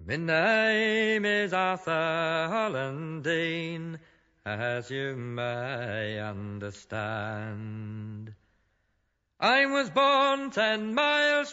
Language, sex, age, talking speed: English, male, 40-59, 85 wpm